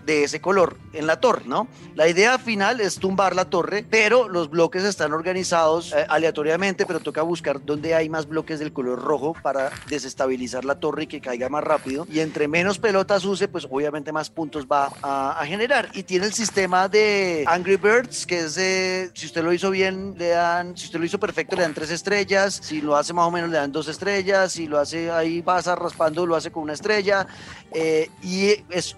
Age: 30-49